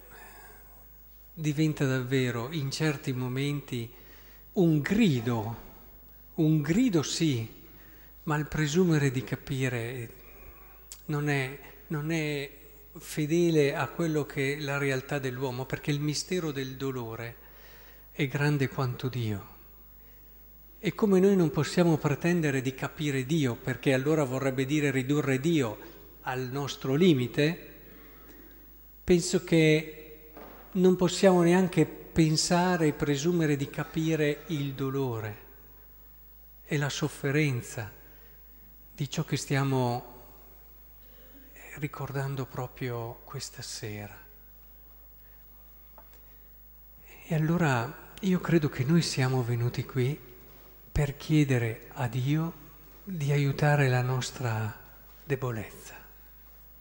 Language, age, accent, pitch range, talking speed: Italian, 50-69, native, 130-155 Hz, 100 wpm